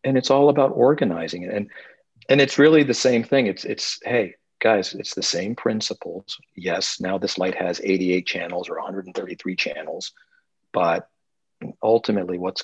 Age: 50-69